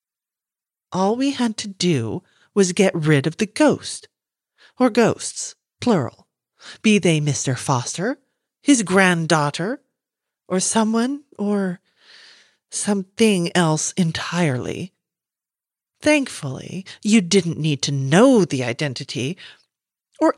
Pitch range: 155-205 Hz